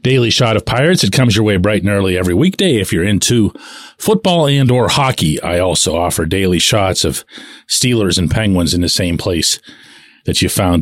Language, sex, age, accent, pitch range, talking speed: English, male, 40-59, American, 110-155 Hz, 200 wpm